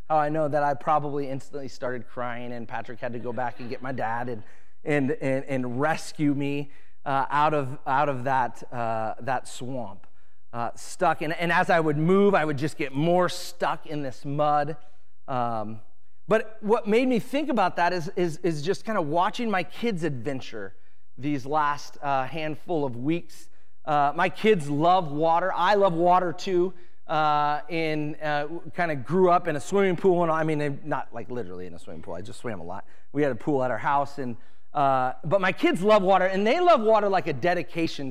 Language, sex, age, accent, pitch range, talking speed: English, male, 30-49, American, 130-180 Hz, 205 wpm